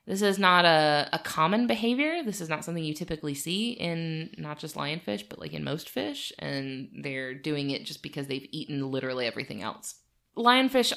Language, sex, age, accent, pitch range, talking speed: English, female, 20-39, American, 140-180 Hz, 190 wpm